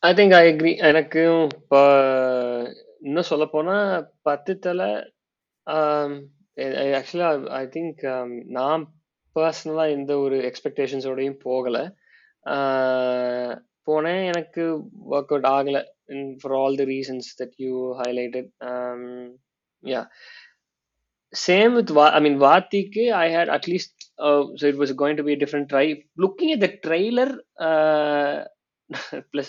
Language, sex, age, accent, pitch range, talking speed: Tamil, male, 20-39, native, 125-150 Hz, 150 wpm